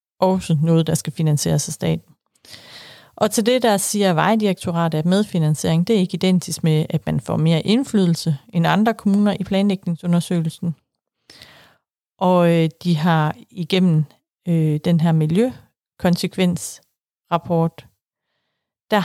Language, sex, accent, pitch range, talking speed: Danish, female, native, 160-190 Hz, 125 wpm